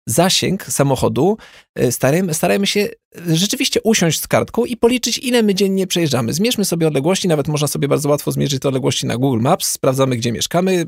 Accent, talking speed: native, 170 wpm